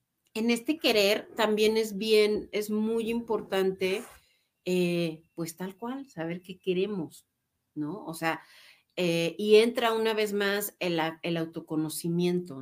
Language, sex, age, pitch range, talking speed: Spanish, female, 40-59, 175-220 Hz, 135 wpm